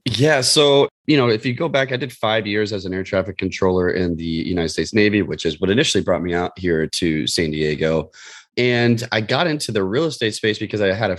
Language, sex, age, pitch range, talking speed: English, male, 30-49, 85-110 Hz, 240 wpm